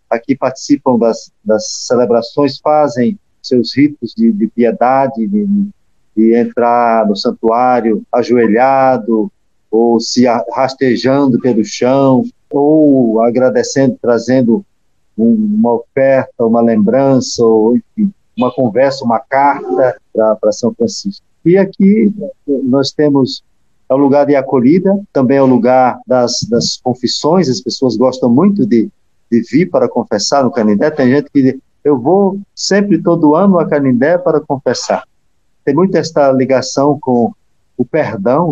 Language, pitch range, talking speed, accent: Portuguese, 120-165 Hz, 135 wpm, Brazilian